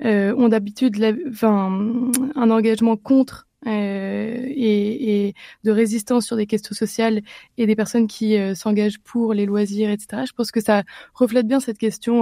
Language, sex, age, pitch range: French, female, 20-39, 205-230 Hz